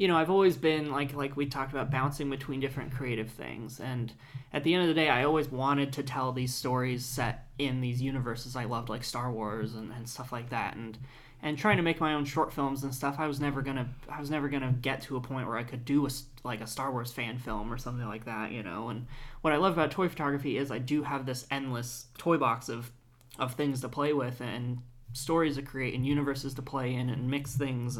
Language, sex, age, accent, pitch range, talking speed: English, male, 20-39, American, 120-140 Hz, 250 wpm